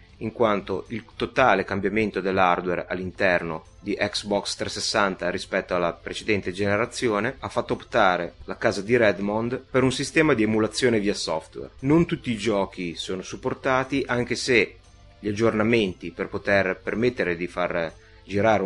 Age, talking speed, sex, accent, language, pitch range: 30-49, 140 wpm, male, native, Italian, 95-115 Hz